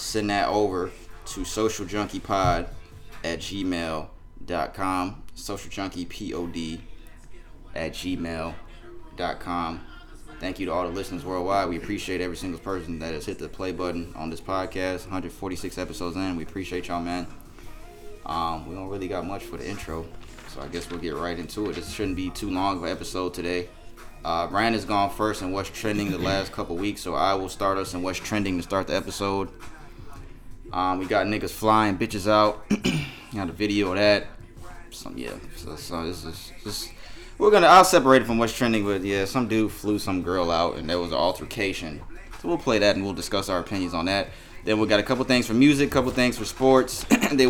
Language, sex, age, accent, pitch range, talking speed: English, male, 20-39, American, 85-110 Hz, 190 wpm